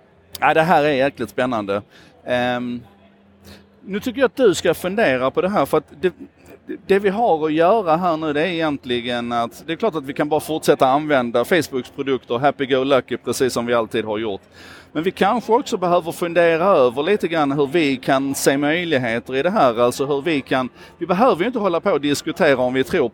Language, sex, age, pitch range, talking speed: Swedish, male, 30-49, 125-165 Hz, 215 wpm